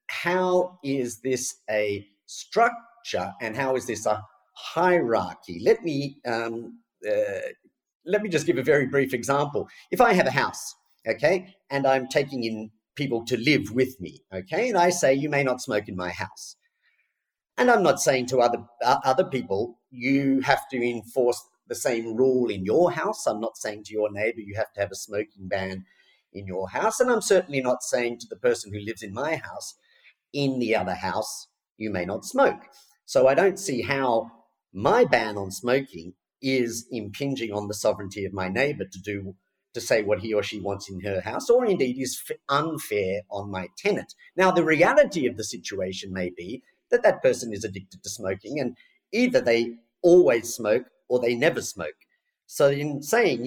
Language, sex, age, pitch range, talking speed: English, male, 40-59, 105-180 Hz, 190 wpm